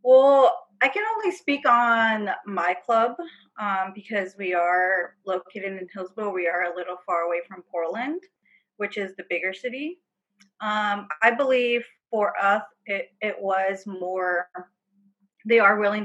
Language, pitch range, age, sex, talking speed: English, 190-230 Hz, 30-49, female, 150 wpm